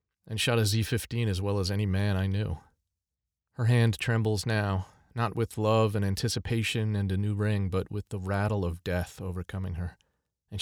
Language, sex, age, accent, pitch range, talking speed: English, male, 40-59, American, 95-115 Hz, 185 wpm